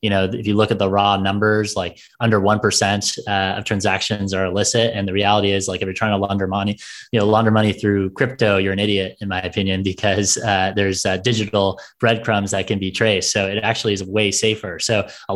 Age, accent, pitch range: 20-39, American, 100-115 Hz